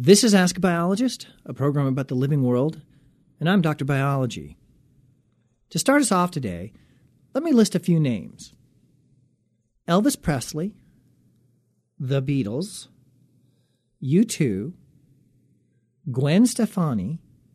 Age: 40-59